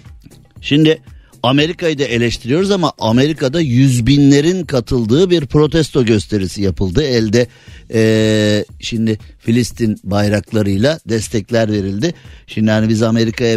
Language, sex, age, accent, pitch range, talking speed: Turkish, male, 50-69, native, 110-145 Hz, 105 wpm